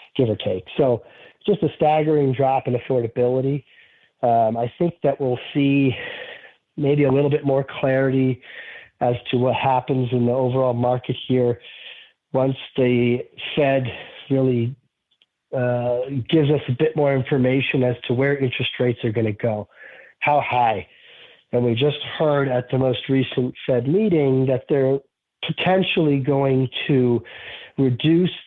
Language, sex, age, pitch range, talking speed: English, male, 40-59, 125-150 Hz, 145 wpm